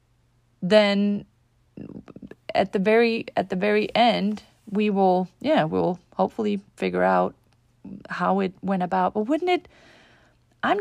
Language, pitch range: English, 160-255 Hz